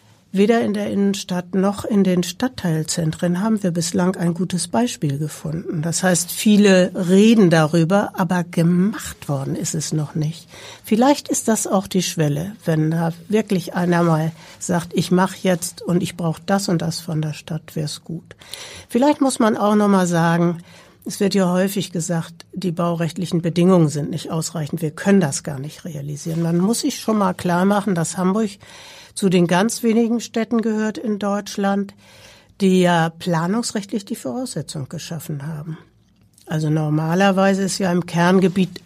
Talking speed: 165 wpm